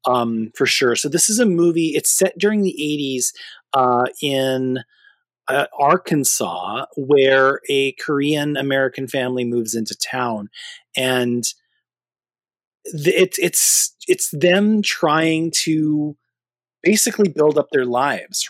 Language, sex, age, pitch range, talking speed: English, male, 30-49, 125-165 Hz, 115 wpm